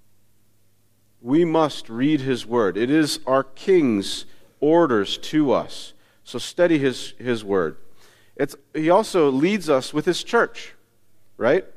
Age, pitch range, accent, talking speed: 50-69, 115-170 Hz, American, 125 wpm